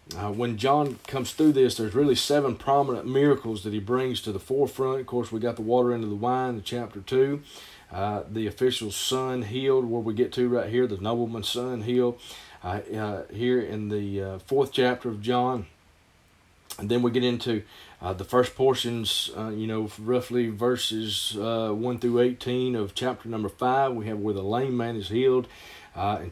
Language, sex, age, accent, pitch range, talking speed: English, male, 40-59, American, 110-130 Hz, 195 wpm